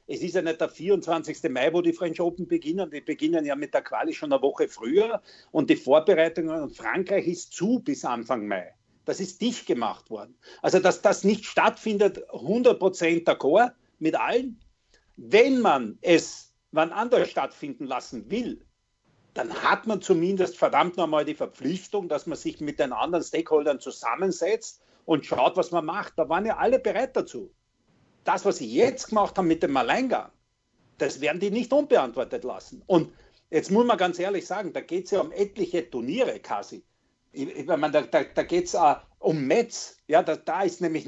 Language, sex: German, male